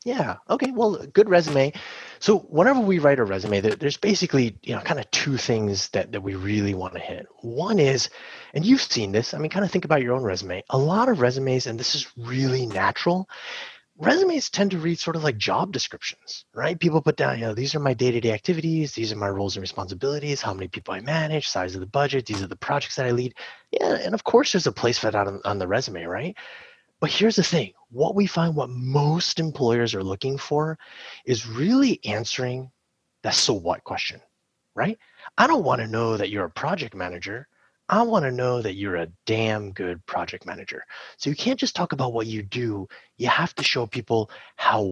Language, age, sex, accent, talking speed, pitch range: English, 30-49, male, American, 215 wpm, 115-175 Hz